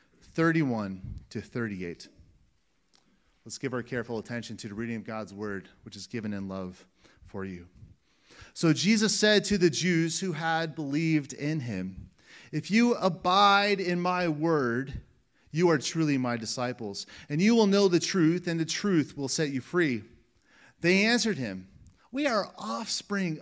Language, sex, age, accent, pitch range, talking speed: English, male, 30-49, American, 115-180 Hz, 160 wpm